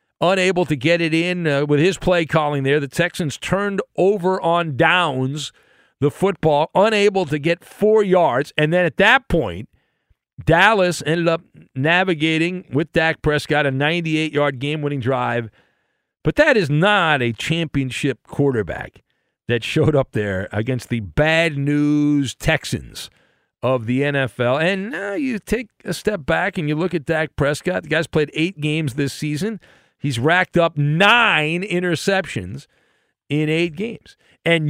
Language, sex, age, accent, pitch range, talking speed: English, male, 50-69, American, 145-220 Hz, 150 wpm